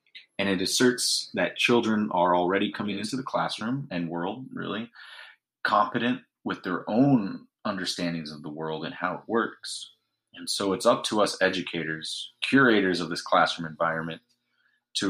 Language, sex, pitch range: English, male, 85-115 Hz